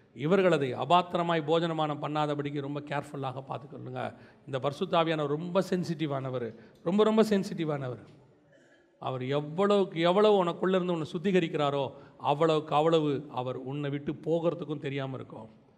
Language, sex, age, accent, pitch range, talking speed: Tamil, male, 40-59, native, 145-185 Hz, 105 wpm